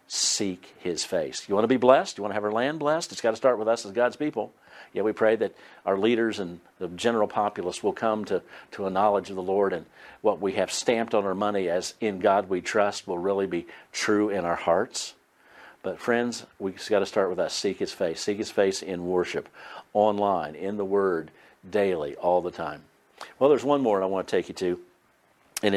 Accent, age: American, 50-69